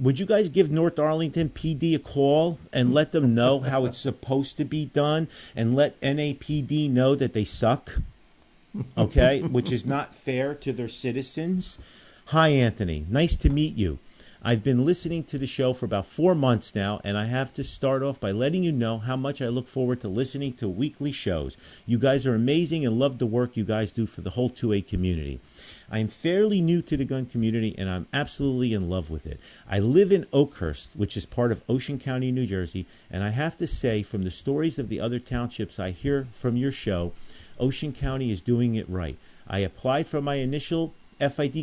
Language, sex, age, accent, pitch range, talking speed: English, male, 50-69, American, 105-145 Hz, 205 wpm